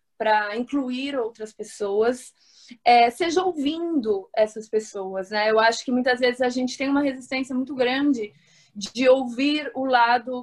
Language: Portuguese